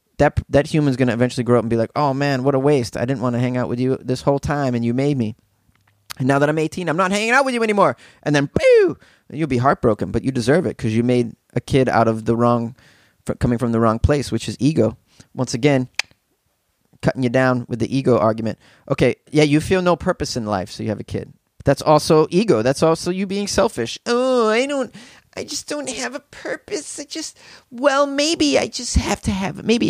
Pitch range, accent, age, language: 125-185 Hz, American, 30-49, English